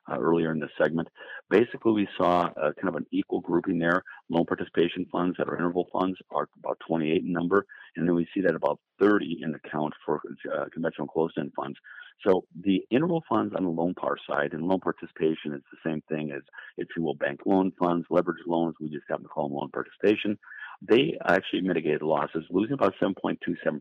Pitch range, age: 85-100 Hz, 50-69